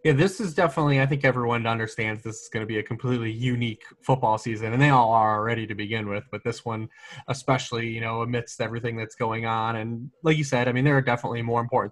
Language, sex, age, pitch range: English, male, 20-39, 110-130 Hz